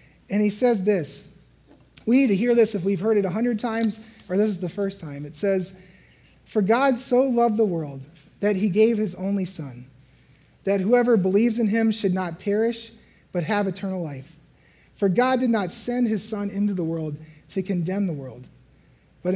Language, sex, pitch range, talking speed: English, male, 170-220 Hz, 195 wpm